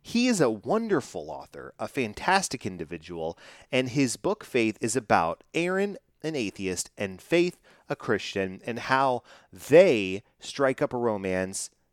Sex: male